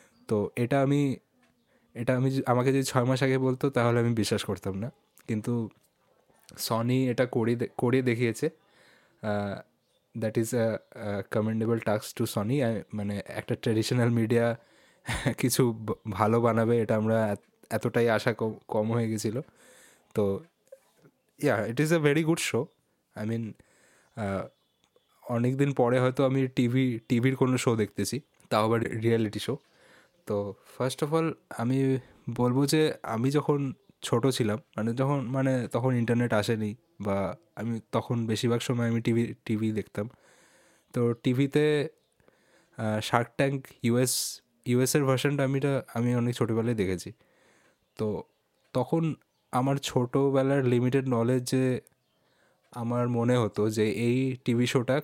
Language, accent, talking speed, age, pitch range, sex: Bengali, native, 130 wpm, 20-39, 110-130 Hz, male